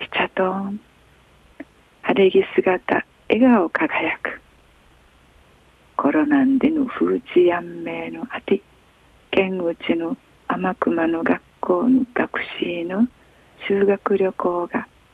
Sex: female